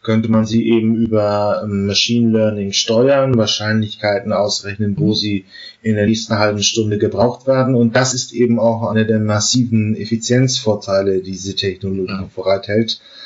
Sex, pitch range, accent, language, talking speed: male, 105-125 Hz, German, German, 145 wpm